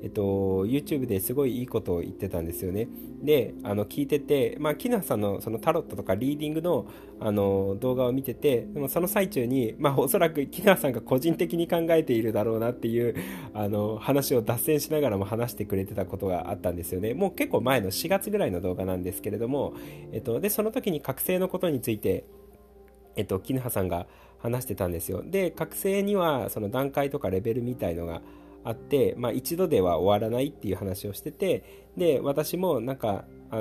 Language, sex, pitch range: Japanese, male, 100-150 Hz